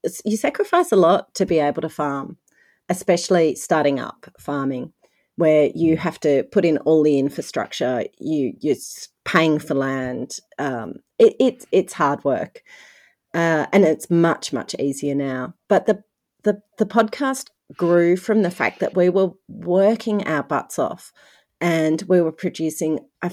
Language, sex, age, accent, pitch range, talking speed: English, female, 40-59, Australian, 150-190 Hz, 155 wpm